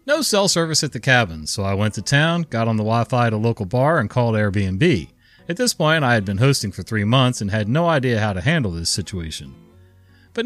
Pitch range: 95-125 Hz